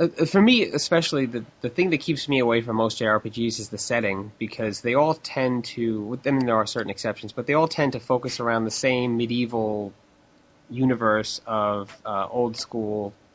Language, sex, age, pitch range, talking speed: English, male, 20-39, 105-135 Hz, 195 wpm